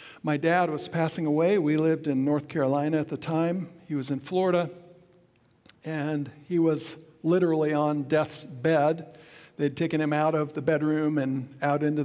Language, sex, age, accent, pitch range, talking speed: English, male, 60-79, American, 145-170 Hz, 170 wpm